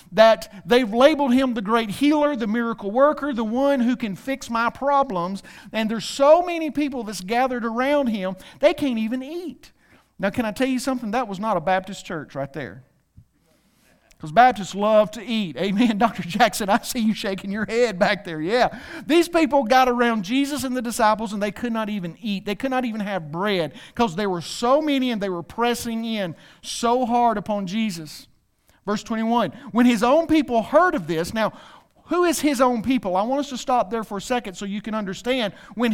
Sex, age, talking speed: male, 50-69, 205 wpm